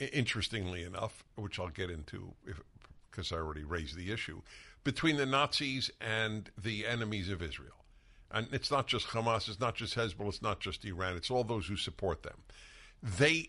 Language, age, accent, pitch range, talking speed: English, 60-79, American, 95-145 Hz, 180 wpm